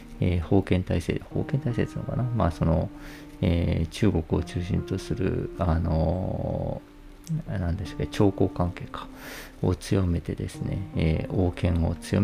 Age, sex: 40-59, male